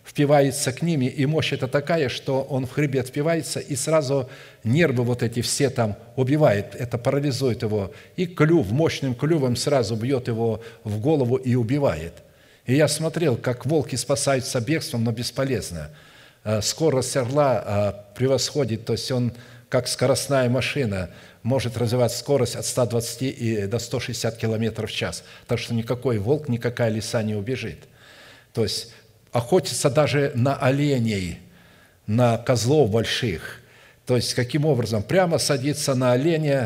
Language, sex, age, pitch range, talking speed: Russian, male, 50-69, 110-140 Hz, 145 wpm